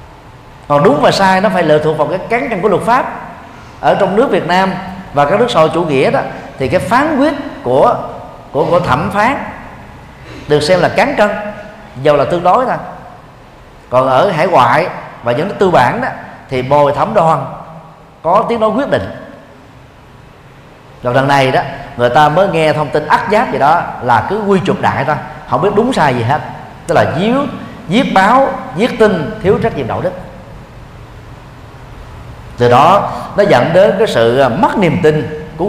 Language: Vietnamese